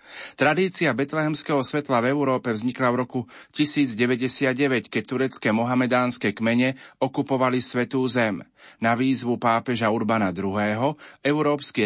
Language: Slovak